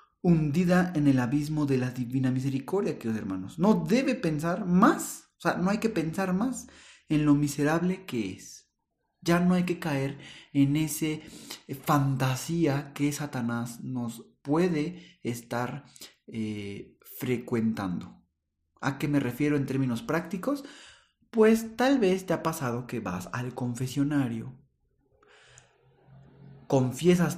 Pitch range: 130-170 Hz